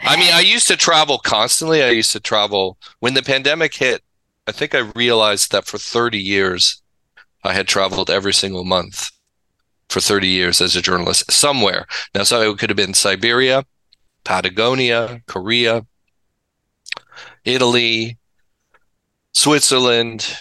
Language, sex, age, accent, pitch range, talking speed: English, male, 40-59, American, 95-125 Hz, 140 wpm